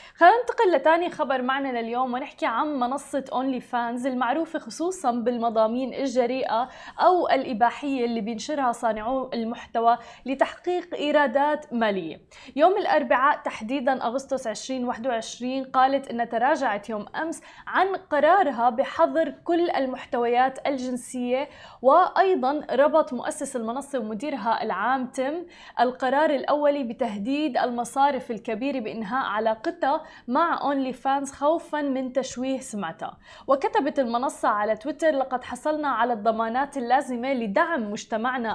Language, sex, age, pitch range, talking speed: Arabic, female, 20-39, 235-290 Hz, 110 wpm